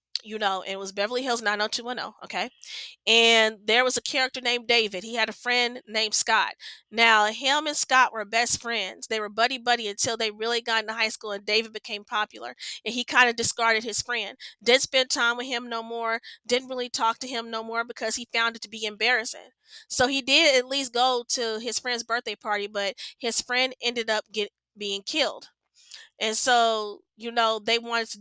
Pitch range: 220-265 Hz